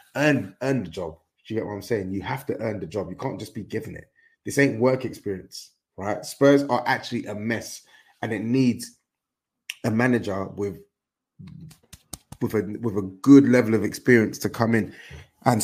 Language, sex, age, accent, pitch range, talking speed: English, male, 20-39, British, 105-140 Hz, 190 wpm